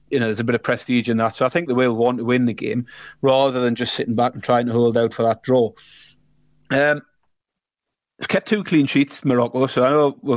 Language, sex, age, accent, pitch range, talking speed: English, male, 30-49, British, 120-145 Hz, 245 wpm